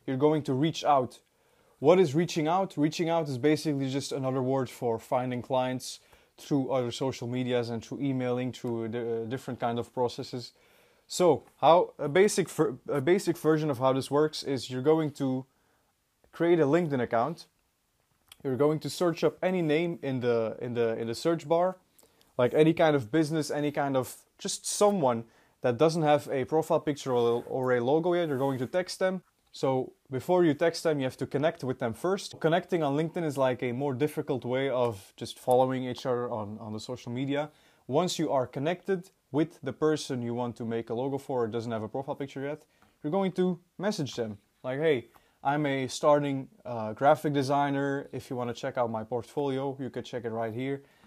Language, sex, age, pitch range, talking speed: English, male, 20-39, 125-155 Hz, 200 wpm